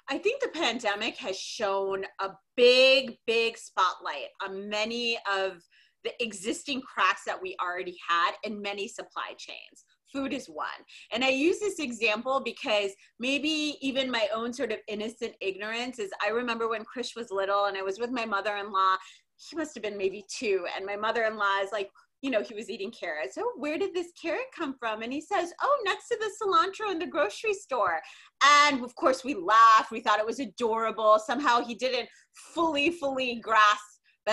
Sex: female